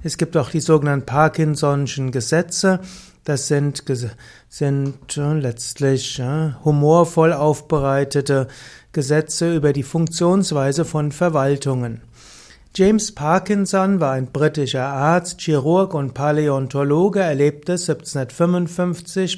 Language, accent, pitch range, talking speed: German, German, 140-175 Hz, 95 wpm